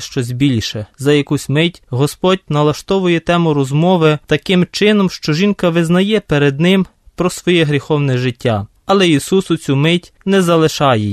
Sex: male